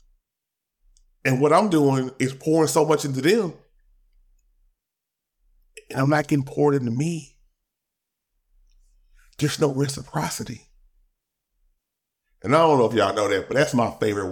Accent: American